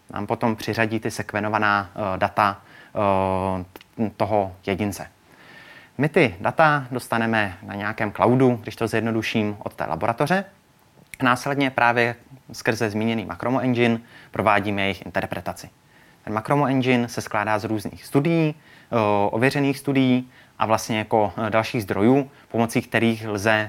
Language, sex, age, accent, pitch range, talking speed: Czech, male, 20-39, native, 105-130 Hz, 120 wpm